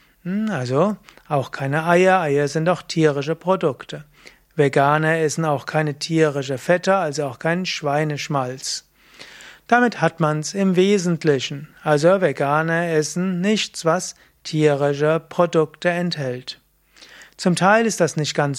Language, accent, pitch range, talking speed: German, German, 150-180 Hz, 125 wpm